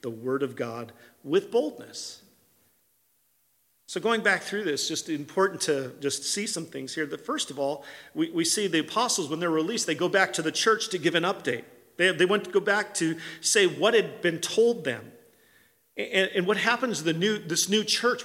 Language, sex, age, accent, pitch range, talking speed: English, male, 40-59, American, 160-230 Hz, 215 wpm